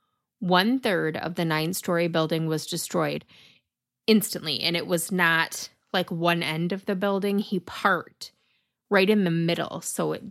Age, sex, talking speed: 30-49, female, 150 wpm